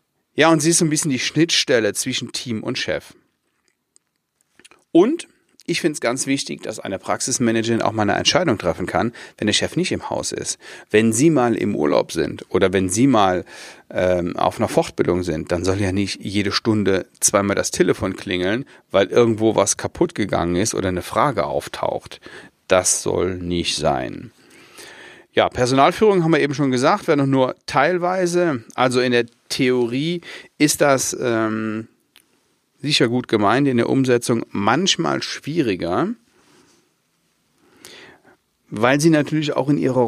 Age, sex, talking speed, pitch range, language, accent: 40-59, male, 160 wpm, 110-145 Hz, German, German